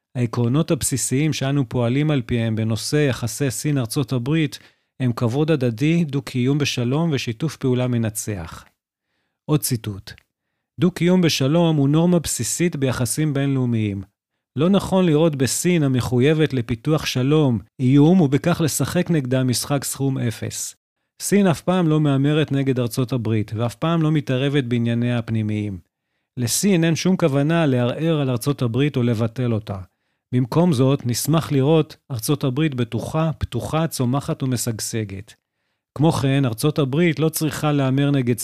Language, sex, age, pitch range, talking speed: Hebrew, male, 40-59, 120-150 Hz, 130 wpm